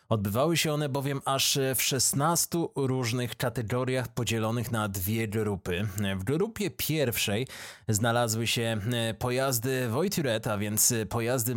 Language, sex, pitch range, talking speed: Polish, male, 110-150 Hz, 120 wpm